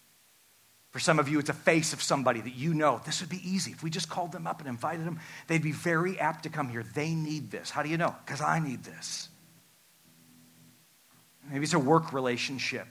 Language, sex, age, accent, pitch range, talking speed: English, male, 40-59, American, 125-160 Hz, 225 wpm